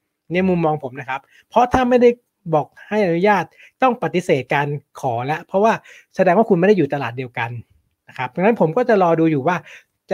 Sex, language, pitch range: male, Thai, 145-195 Hz